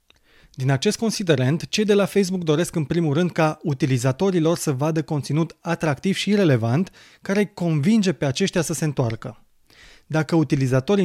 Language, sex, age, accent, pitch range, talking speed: Romanian, male, 30-49, native, 140-180 Hz, 160 wpm